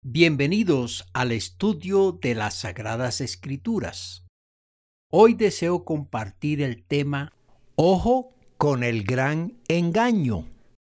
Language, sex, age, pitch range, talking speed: Spanish, male, 60-79, 130-210 Hz, 95 wpm